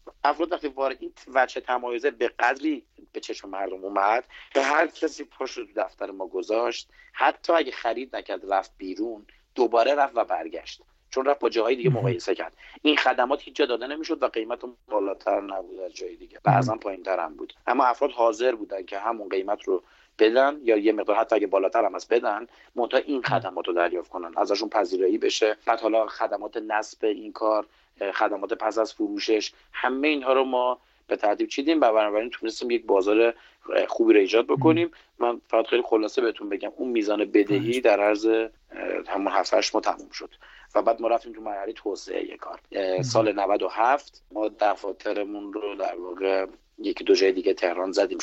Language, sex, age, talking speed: Persian, male, 40-59, 180 wpm